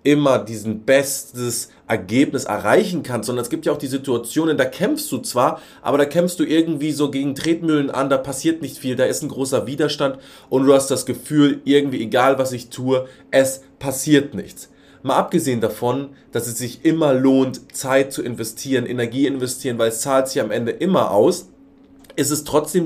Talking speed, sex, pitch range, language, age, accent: 190 wpm, male, 125-150 Hz, German, 30-49, German